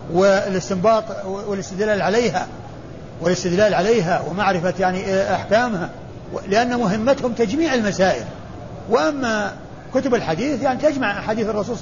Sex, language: male, Arabic